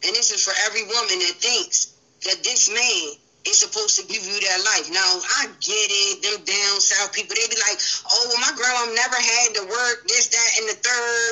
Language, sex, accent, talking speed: English, female, American, 225 wpm